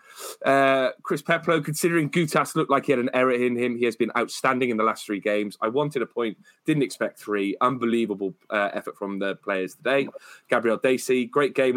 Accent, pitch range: British, 105-135 Hz